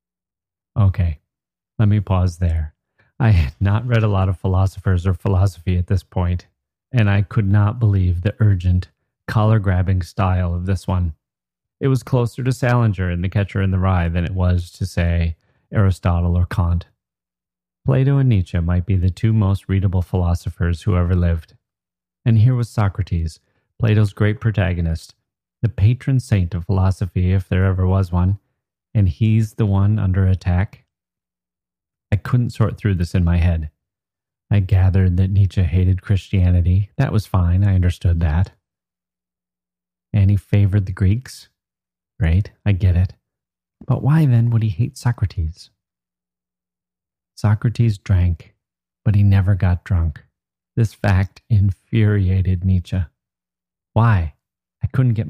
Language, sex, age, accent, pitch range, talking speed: English, male, 30-49, American, 90-105 Hz, 150 wpm